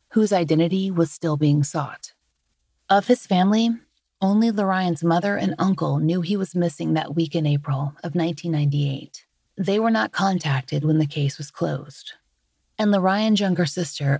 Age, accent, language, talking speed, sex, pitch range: 30-49, American, English, 155 wpm, female, 155-195 Hz